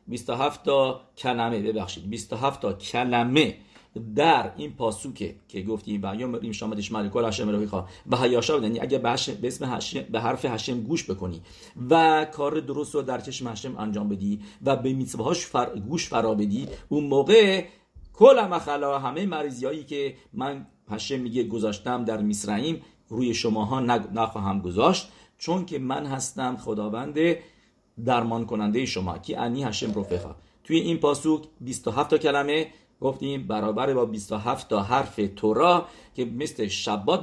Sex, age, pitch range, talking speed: male, 50-69, 110-155 Hz, 145 wpm